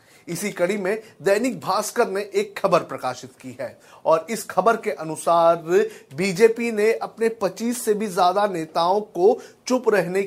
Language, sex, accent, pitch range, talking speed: Hindi, male, native, 175-235 Hz, 160 wpm